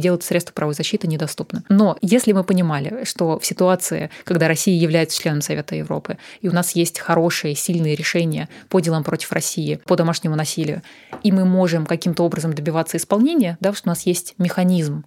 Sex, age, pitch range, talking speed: female, 20-39, 165-195 Hz, 180 wpm